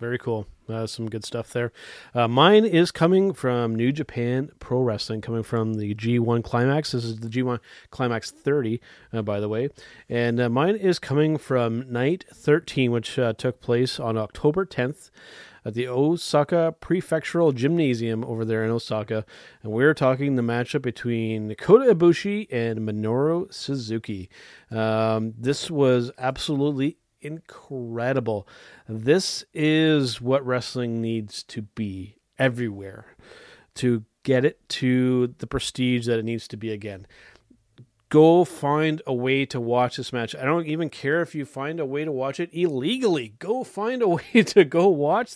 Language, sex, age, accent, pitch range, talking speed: English, male, 30-49, American, 115-155 Hz, 155 wpm